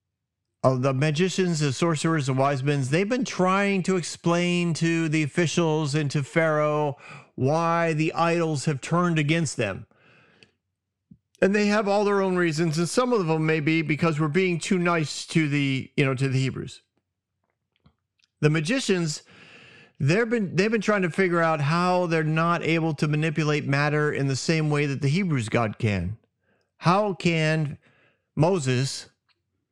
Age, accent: 40-59, American